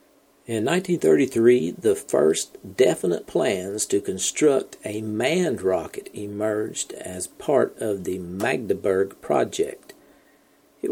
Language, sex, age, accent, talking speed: English, male, 50-69, American, 105 wpm